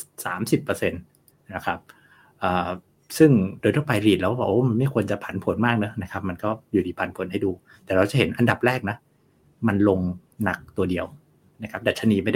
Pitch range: 100-135 Hz